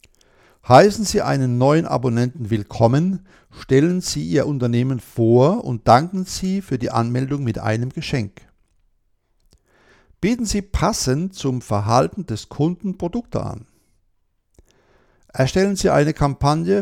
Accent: German